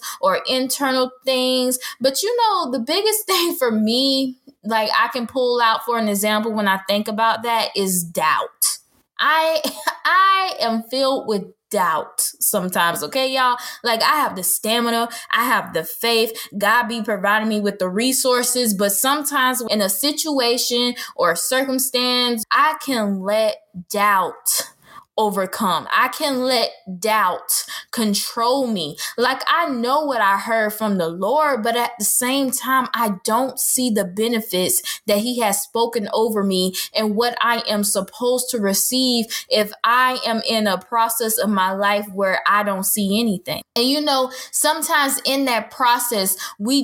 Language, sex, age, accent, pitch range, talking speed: English, female, 10-29, American, 210-265 Hz, 160 wpm